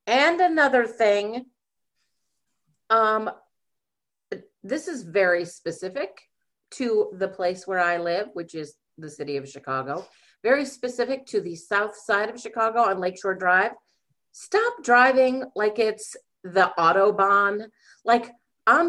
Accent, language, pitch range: American, English, 185-255 Hz